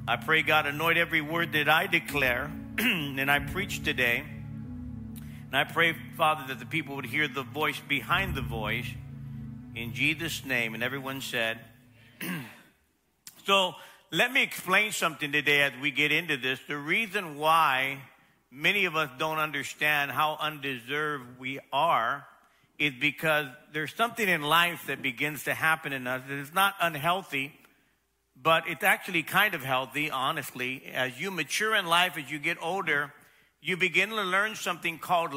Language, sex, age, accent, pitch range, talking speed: English, male, 50-69, American, 135-170 Hz, 160 wpm